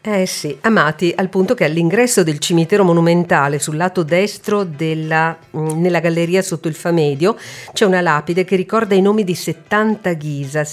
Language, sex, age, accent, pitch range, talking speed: Italian, female, 50-69, native, 160-220 Hz, 160 wpm